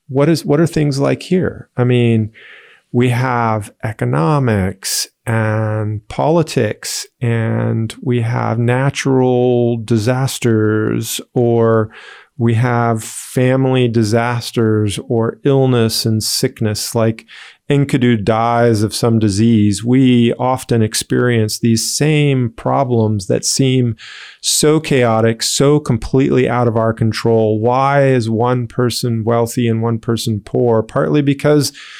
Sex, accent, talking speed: male, American, 115 wpm